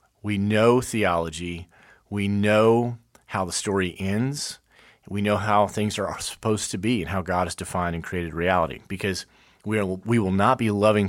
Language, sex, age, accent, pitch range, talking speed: English, male, 30-49, American, 95-110 Hz, 180 wpm